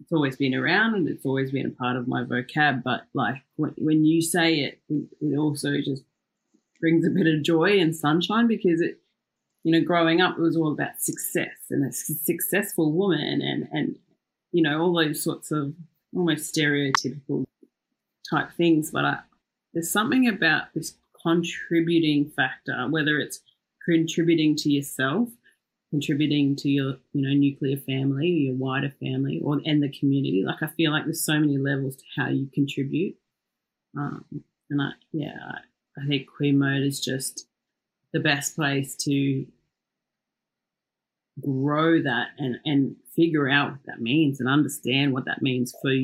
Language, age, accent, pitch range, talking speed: English, 30-49, Australian, 140-165 Hz, 165 wpm